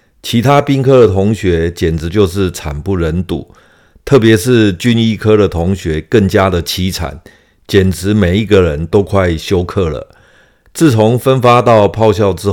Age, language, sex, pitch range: 50-69, Chinese, male, 85-110 Hz